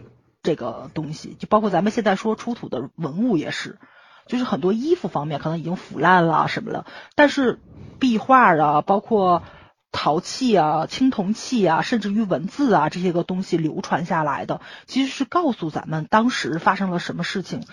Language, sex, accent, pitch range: Chinese, female, native, 165-220 Hz